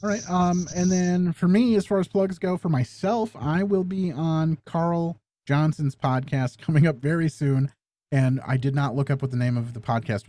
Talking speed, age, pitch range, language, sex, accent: 215 wpm, 30-49, 125-170 Hz, English, male, American